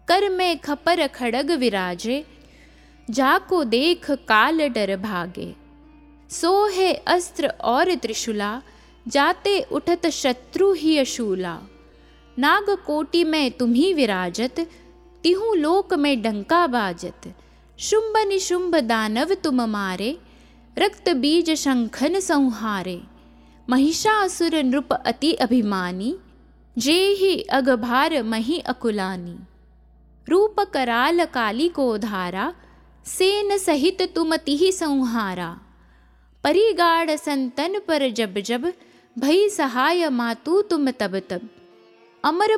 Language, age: Hindi, 20-39